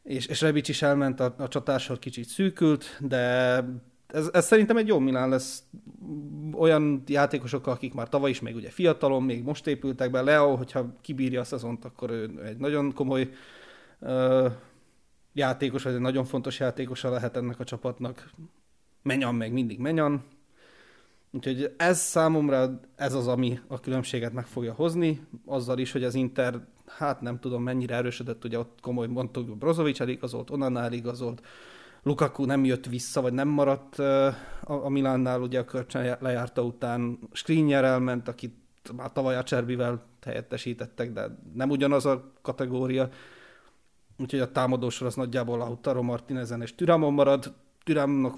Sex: male